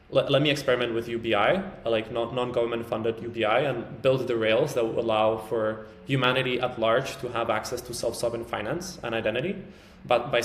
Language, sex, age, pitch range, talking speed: English, male, 20-39, 110-120 Hz, 190 wpm